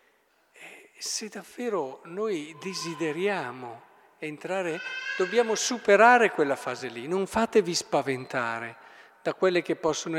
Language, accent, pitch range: Italian, native, 145-185 Hz